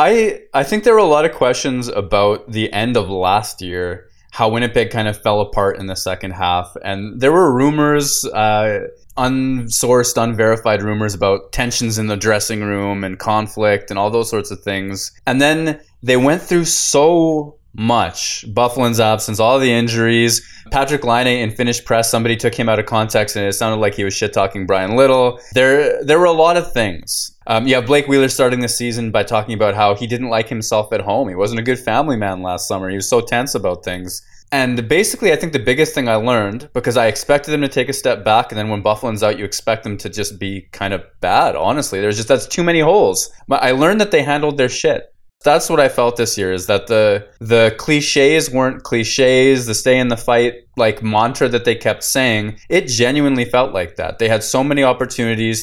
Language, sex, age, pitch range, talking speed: English, male, 20-39, 105-130 Hz, 215 wpm